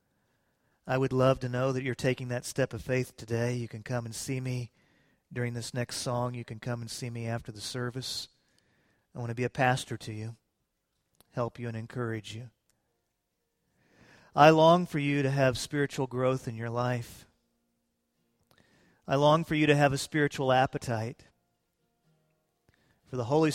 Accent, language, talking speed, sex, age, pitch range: American, English, 175 wpm, male, 40-59, 120-160 Hz